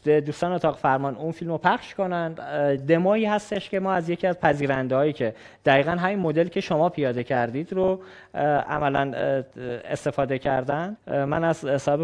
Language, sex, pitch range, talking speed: Persian, male, 140-185 Hz, 160 wpm